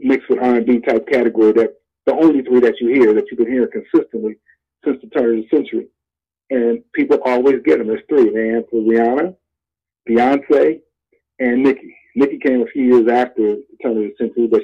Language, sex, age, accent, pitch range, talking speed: English, male, 40-59, American, 115-140 Hz, 195 wpm